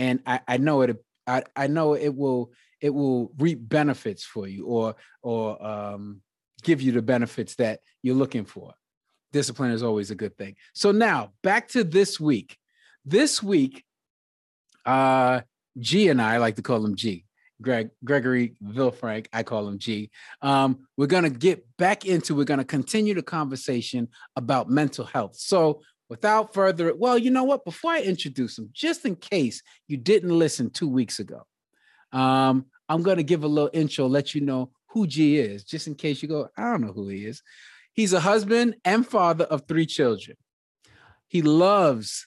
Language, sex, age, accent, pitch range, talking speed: English, male, 30-49, American, 120-175 Hz, 180 wpm